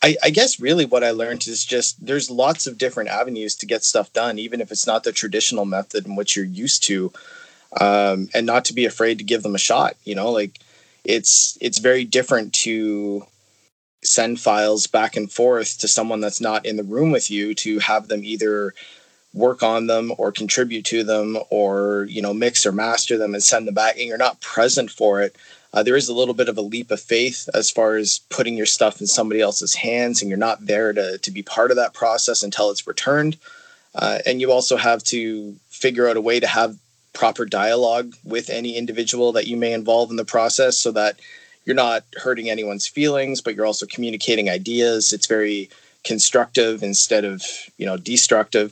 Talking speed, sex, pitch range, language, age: 210 wpm, male, 105-120 Hz, English, 20-39